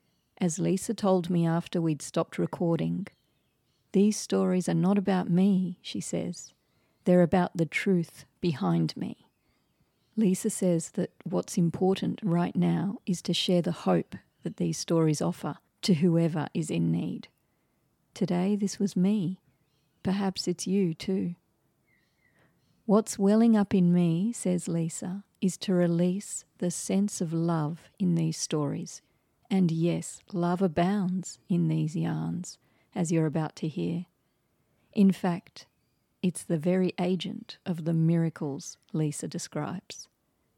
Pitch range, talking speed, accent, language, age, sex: 165-190 Hz, 135 wpm, Australian, English, 40-59, female